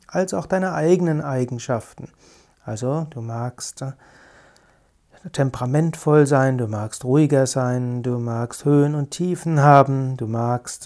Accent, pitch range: German, 130-155 Hz